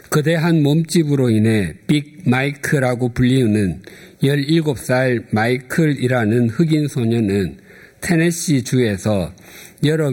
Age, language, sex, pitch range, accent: 50-69, Korean, male, 110-150 Hz, native